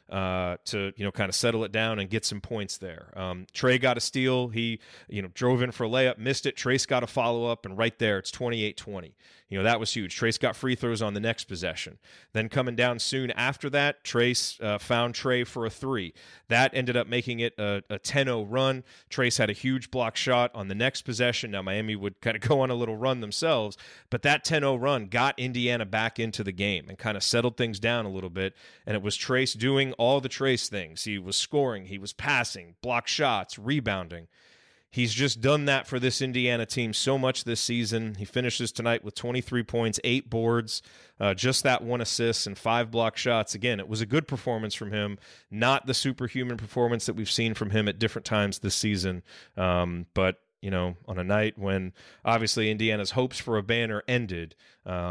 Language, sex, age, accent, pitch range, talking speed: English, male, 30-49, American, 100-125 Hz, 220 wpm